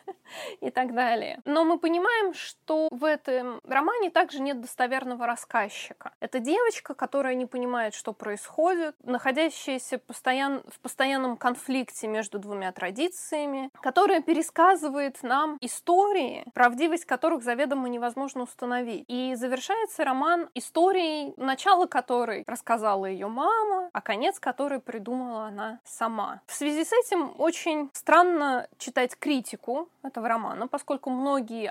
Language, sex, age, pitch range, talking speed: Russian, female, 20-39, 230-305 Hz, 120 wpm